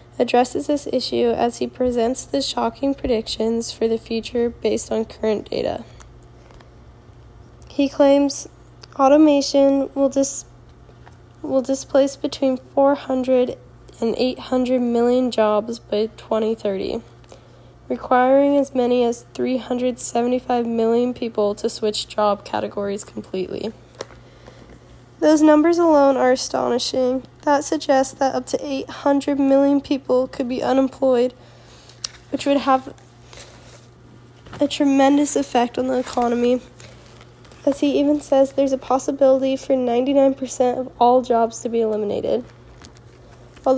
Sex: female